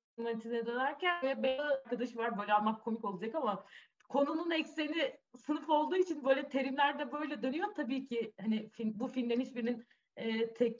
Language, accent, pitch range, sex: Turkish, native, 235-280 Hz, female